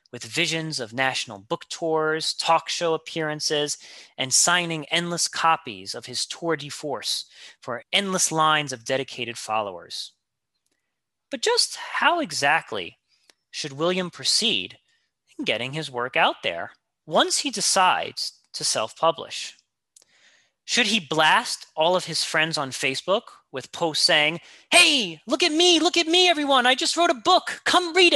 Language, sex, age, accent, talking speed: English, male, 30-49, American, 145 wpm